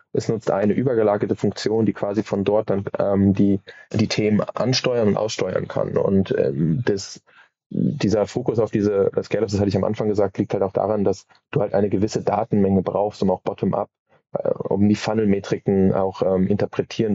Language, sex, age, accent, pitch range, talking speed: German, male, 20-39, German, 95-105 Hz, 180 wpm